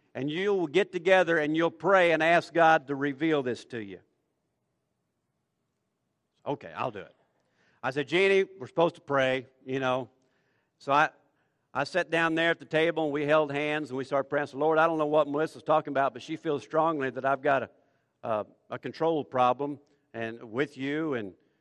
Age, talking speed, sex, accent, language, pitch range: 50-69, 200 wpm, male, American, English, 130-155 Hz